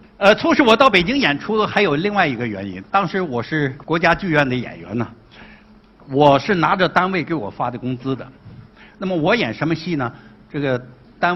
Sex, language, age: male, Chinese, 60-79